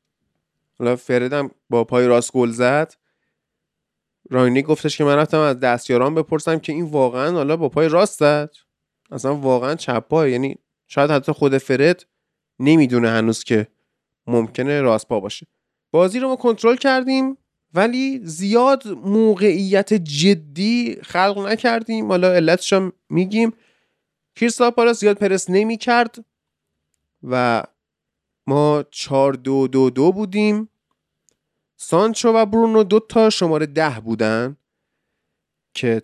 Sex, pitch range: male, 130-210 Hz